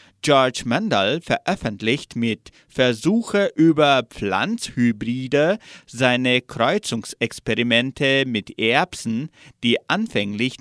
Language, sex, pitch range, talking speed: German, male, 115-185 Hz, 75 wpm